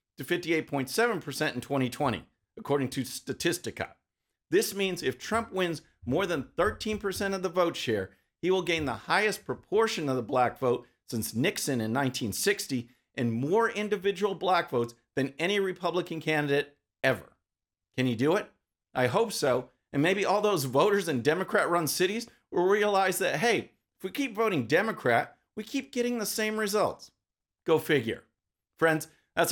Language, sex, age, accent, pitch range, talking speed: English, male, 50-69, American, 130-205 Hz, 160 wpm